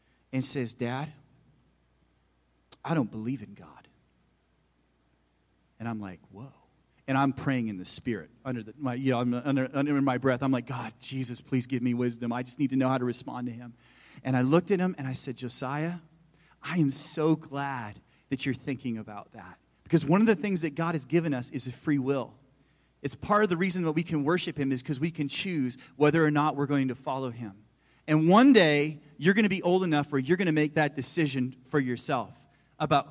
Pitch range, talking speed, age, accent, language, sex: 125-160 Hz, 205 wpm, 40-59, American, English, male